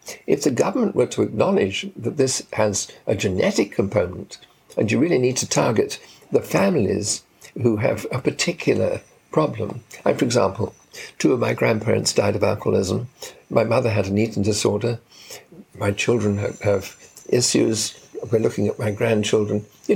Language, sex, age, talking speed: English, male, 60-79, 155 wpm